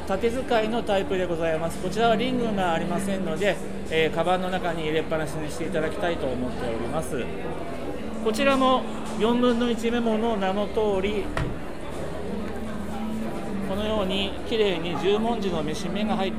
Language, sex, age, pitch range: Japanese, male, 40-59, 180-230 Hz